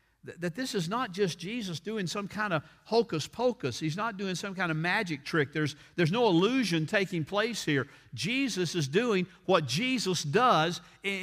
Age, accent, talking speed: 50-69, American, 180 wpm